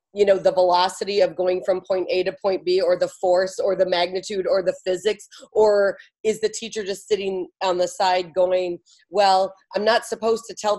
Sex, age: female, 30-49